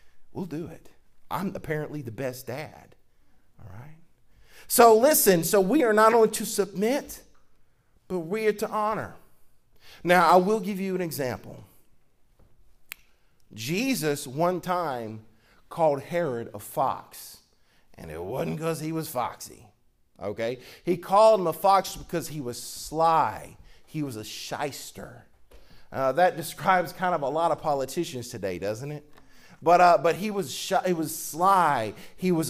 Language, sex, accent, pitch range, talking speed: English, male, American, 150-215 Hz, 150 wpm